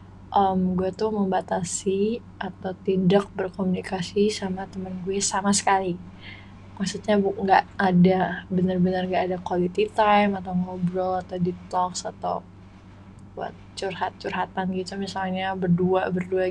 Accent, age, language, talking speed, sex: native, 20-39, Indonesian, 115 wpm, female